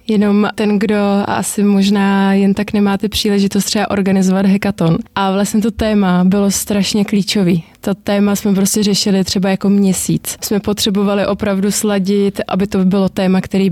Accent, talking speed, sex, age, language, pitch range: native, 160 wpm, female, 20-39, Czech, 190-210 Hz